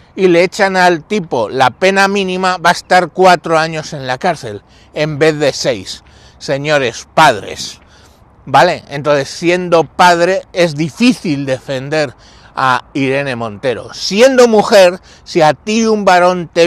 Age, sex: 60-79, male